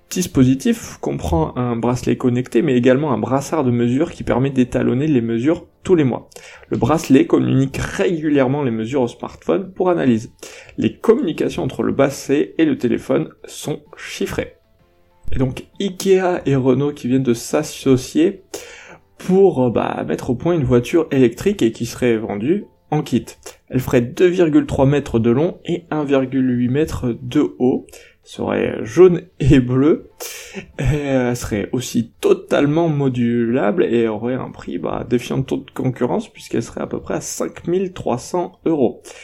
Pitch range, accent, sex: 120-160 Hz, French, male